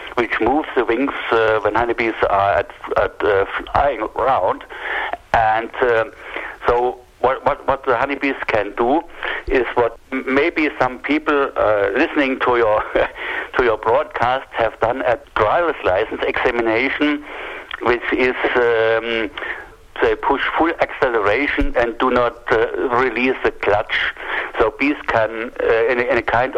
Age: 60-79